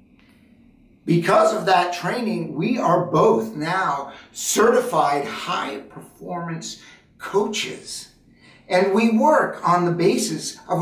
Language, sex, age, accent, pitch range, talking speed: English, male, 50-69, American, 155-215 Hz, 100 wpm